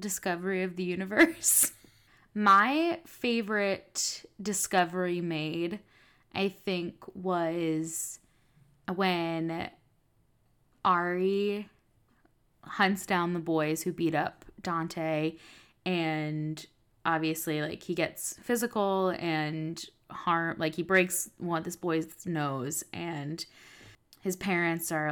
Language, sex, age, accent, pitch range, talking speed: English, female, 10-29, American, 155-190 Hz, 100 wpm